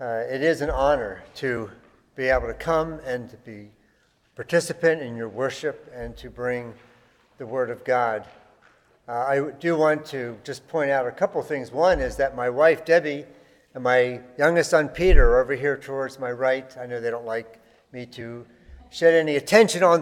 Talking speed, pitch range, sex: 190 wpm, 120-150 Hz, male